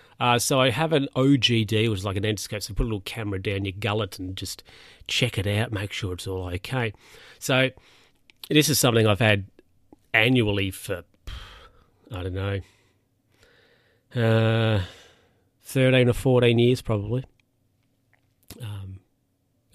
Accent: Australian